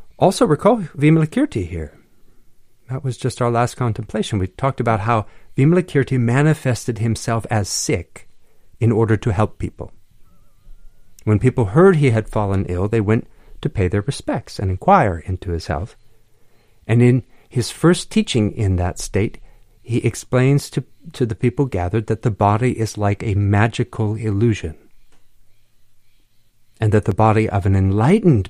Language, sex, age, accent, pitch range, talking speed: English, male, 50-69, American, 100-120 Hz, 150 wpm